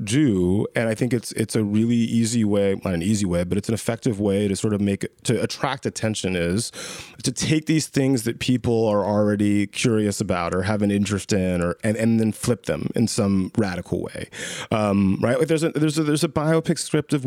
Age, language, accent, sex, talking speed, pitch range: 30-49, English, American, male, 220 wpm, 110-150 Hz